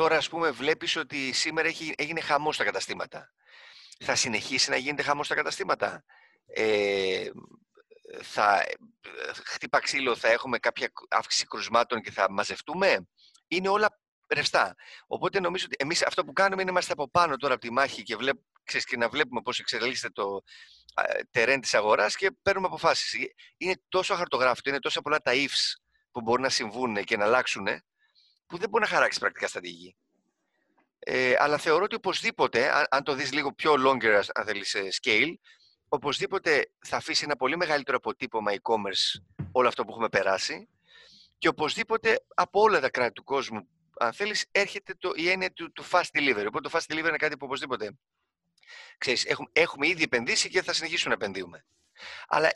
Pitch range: 145-240 Hz